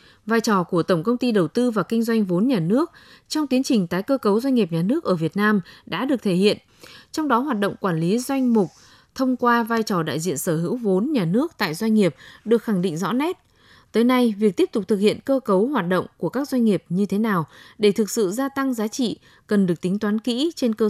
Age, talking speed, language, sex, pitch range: 20-39, 260 wpm, Vietnamese, female, 190-245 Hz